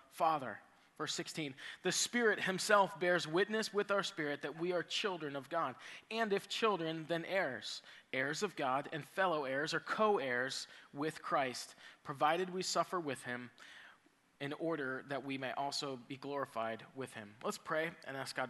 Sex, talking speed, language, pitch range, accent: male, 170 wpm, English, 125-160 Hz, American